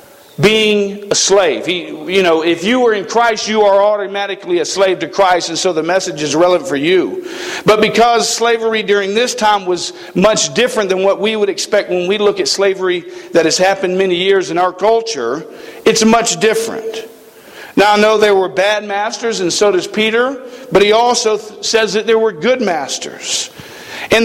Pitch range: 195-235 Hz